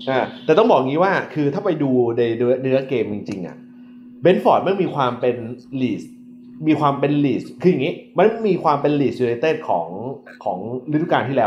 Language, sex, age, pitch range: Thai, male, 30-49, 130-185 Hz